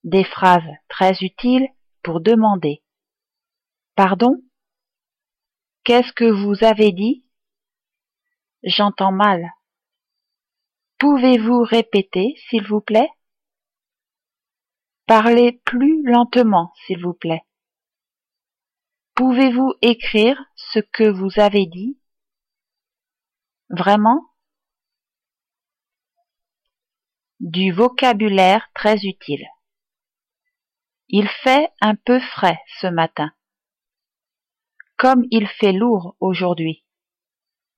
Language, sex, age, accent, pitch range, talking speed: English, female, 40-59, French, 190-255 Hz, 80 wpm